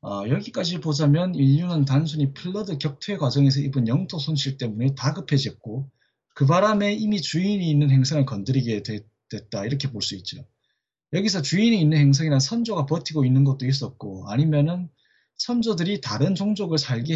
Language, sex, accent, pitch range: Korean, male, native, 130-190 Hz